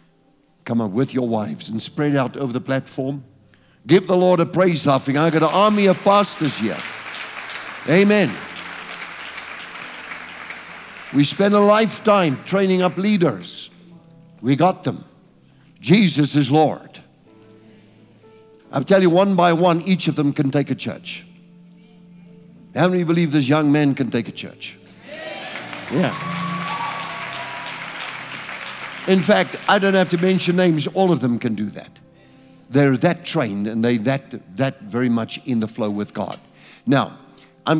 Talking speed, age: 145 wpm, 60-79